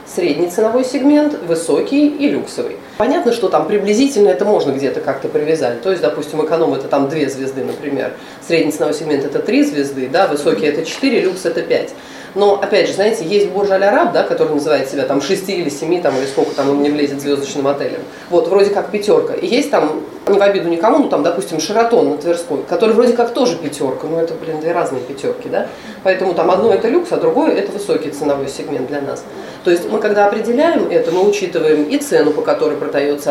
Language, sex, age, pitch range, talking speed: Russian, female, 30-49, 155-240 Hz, 205 wpm